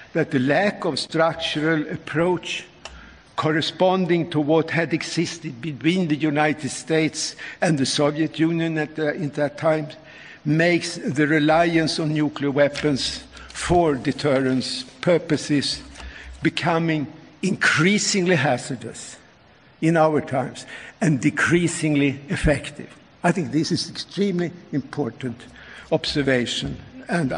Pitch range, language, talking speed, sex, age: 140-170 Hz, English, 110 wpm, male, 60-79